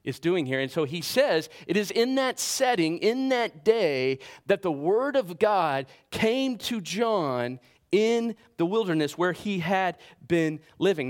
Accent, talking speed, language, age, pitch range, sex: American, 170 wpm, English, 40-59, 135-190 Hz, male